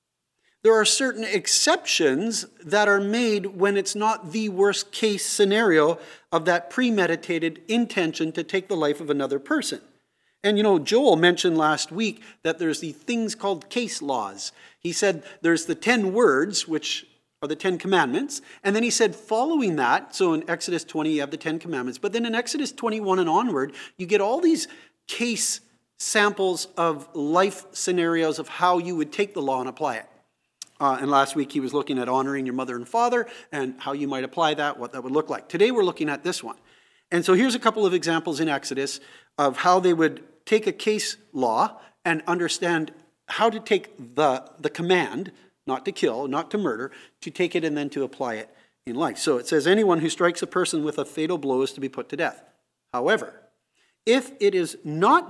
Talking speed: 200 wpm